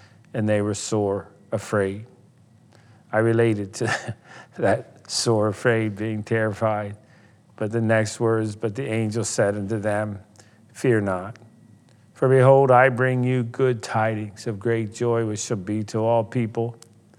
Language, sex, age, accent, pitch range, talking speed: English, male, 50-69, American, 110-120 Hz, 145 wpm